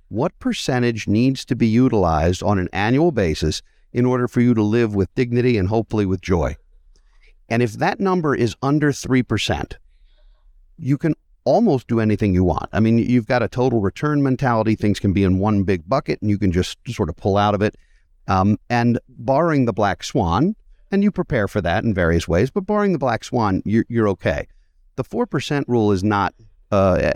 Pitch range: 95-125 Hz